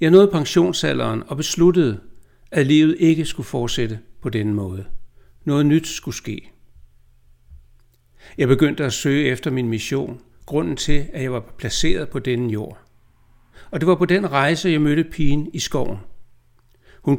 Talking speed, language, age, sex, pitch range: 155 wpm, Danish, 60-79, male, 115-155 Hz